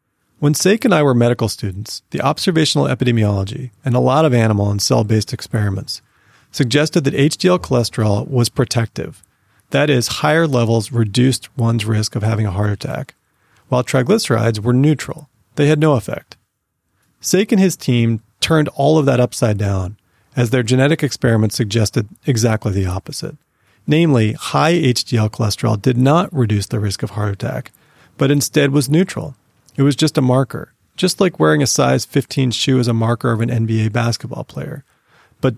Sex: male